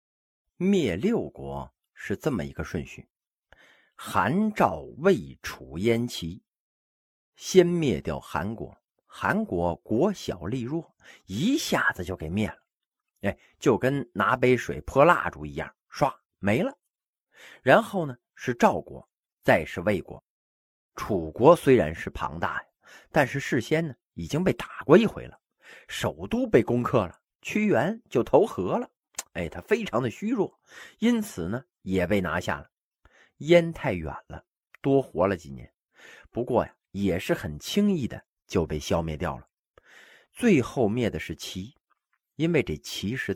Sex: male